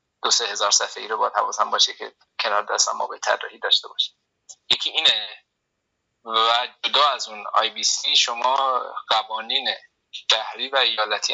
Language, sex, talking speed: Persian, male, 155 wpm